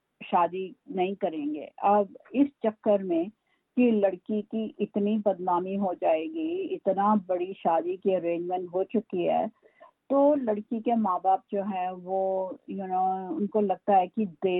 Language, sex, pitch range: Urdu, female, 185-230 Hz